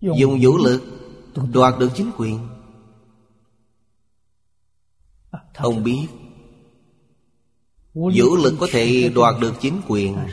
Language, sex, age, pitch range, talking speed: Vietnamese, male, 30-49, 100-125 Hz, 100 wpm